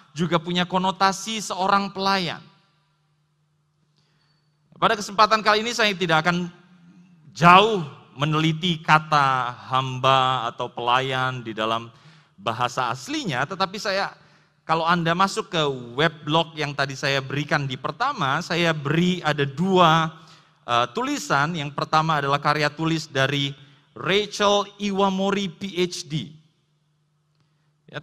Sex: male